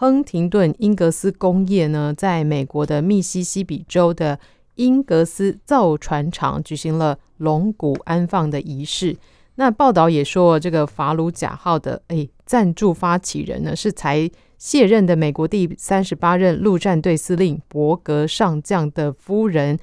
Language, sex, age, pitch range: Chinese, female, 30-49, 155-195 Hz